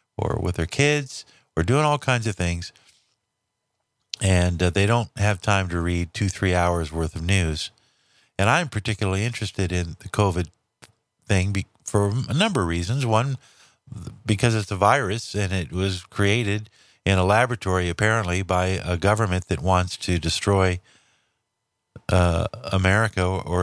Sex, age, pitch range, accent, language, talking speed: male, 50-69, 95-115 Hz, American, English, 150 wpm